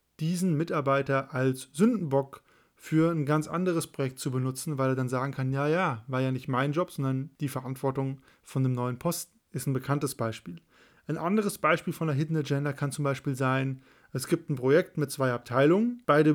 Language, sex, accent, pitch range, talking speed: German, male, German, 130-160 Hz, 195 wpm